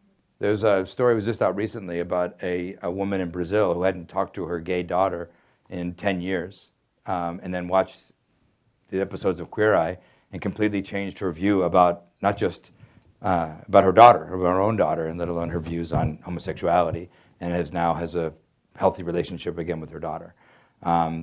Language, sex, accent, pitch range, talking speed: English, male, American, 90-100 Hz, 190 wpm